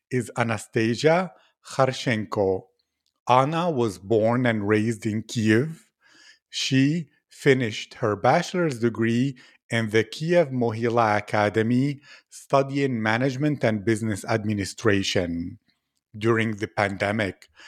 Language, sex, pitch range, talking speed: English, male, 110-135 Hz, 95 wpm